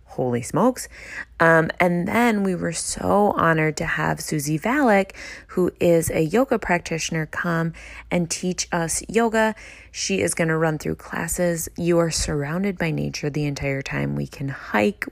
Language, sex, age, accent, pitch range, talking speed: English, female, 20-39, American, 150-185 Hz, 165 wpm